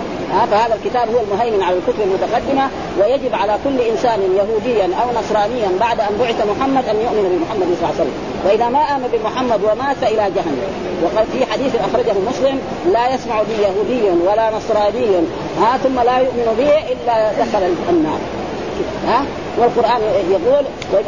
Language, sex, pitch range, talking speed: Arabic, female, 205-250 Hz, 155 wpm